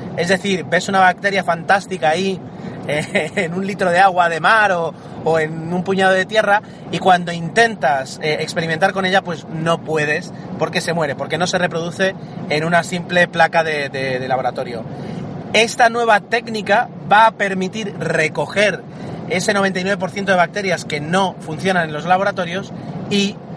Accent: Spanish